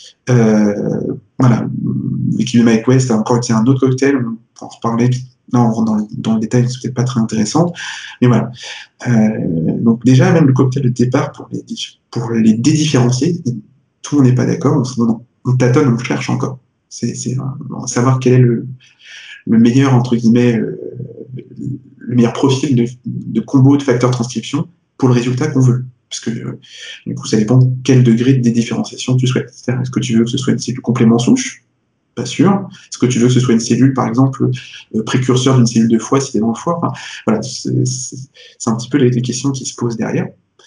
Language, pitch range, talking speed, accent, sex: French, 120-130 Hz, 210 wpm, French, male